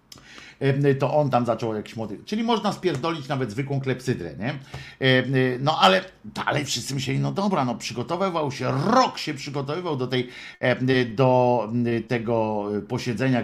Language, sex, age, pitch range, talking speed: Polish, male, 50-69, 115-145 Hz, 140 wpm